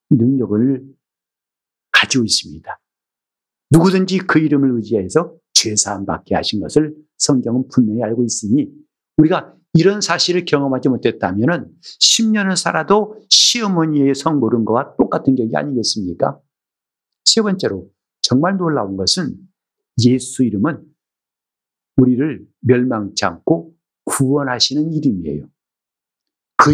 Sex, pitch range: male, 130-195 Hz